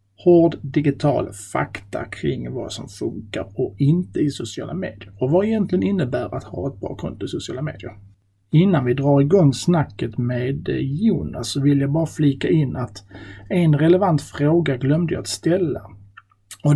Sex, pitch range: male, 120-160 Hz